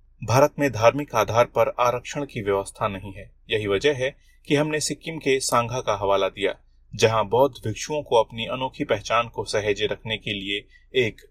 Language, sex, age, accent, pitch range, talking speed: Hindi, male, 30-49, native, 105-140 Hz, 180 wpm